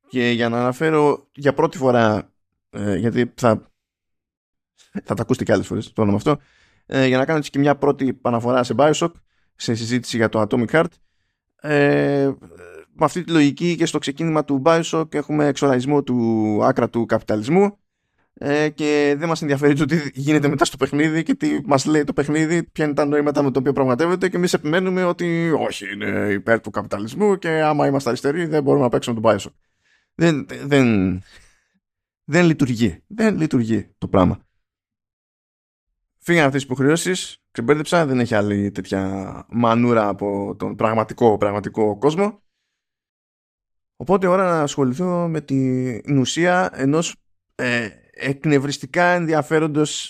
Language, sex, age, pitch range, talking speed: Greek, male, 20-39, 110-155 Hz, 150 wpm